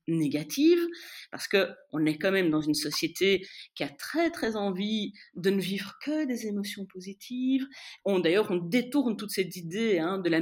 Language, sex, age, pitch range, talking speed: French, female, 40-59, 170-260 Hz, 180 wpm